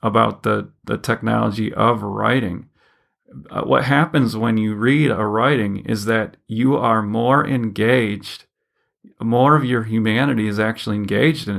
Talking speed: 145 wpm